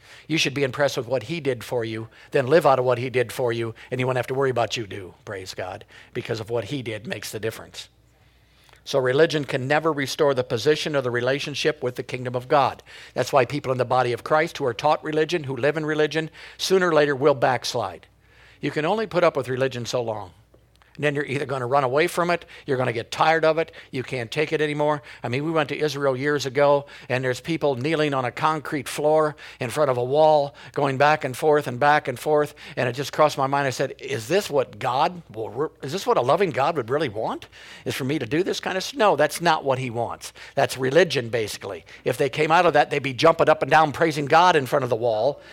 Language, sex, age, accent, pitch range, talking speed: English, male, 60-79, American, 130-155 Hz, 250 wpm